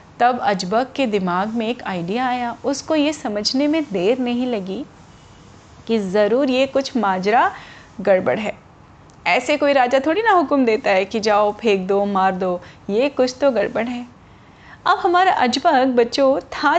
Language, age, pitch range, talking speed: Hindi, 30-49, 210-280 Hz, 165 wpm